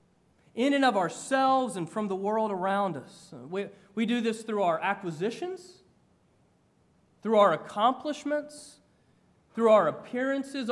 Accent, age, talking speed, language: American, 30-49, 130 wpm, English